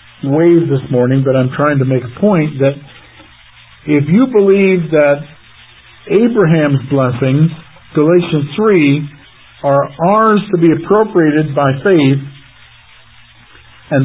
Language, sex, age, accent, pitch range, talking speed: English, male, 50-69, American, 130-170 Hz, 115 wpm